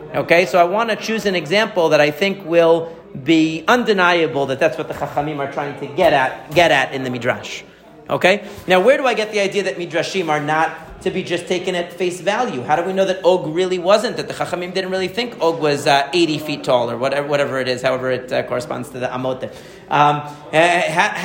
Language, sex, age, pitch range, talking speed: English, male, 40-59, 155-195 Hz, 235 wpm